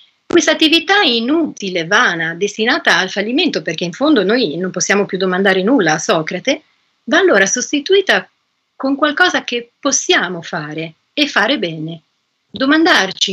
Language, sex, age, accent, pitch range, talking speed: Italian, female, 40-59, native, 185-280 Hz, 135 wpm